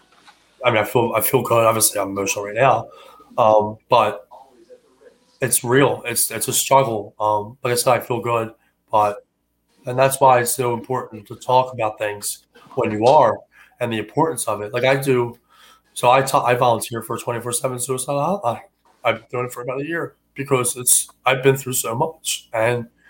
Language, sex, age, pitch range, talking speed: English, male, 20-39, 110-130 Hz, 195 wpm